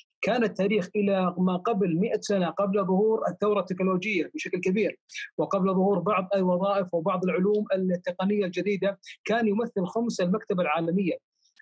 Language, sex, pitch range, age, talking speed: Arabic, male, 185-225 Hz, 30-49, 135 wpm